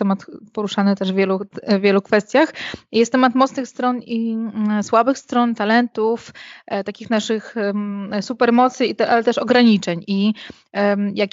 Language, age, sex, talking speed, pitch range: Polish, 20-39, female, 125 wpm, 205-230 Hz